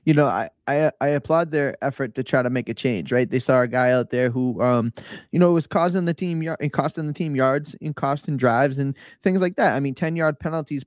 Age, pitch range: 20-39, 130-160 Hz